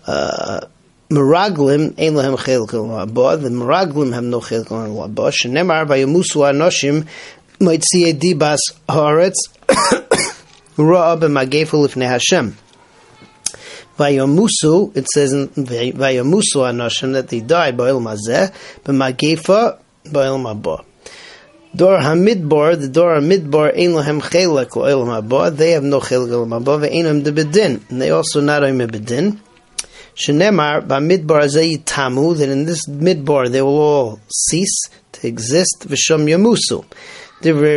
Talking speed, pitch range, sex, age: 100 wpm, 135-175 Hz, male, 30-49